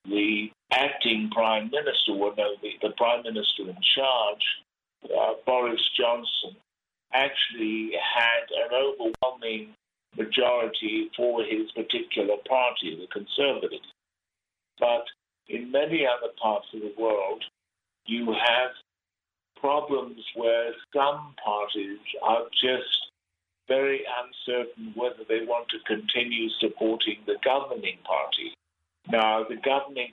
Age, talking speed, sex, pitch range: 50-69, 110 wpm, male, 110-140 Hz